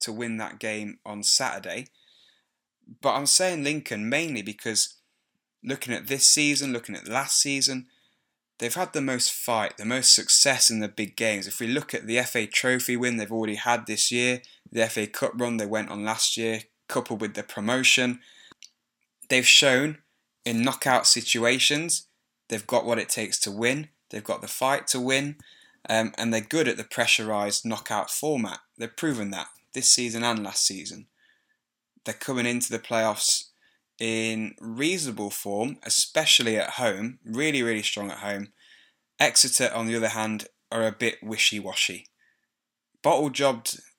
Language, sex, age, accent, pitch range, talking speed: English, male, 10-29, British, 110-130 Hz, 160 wpm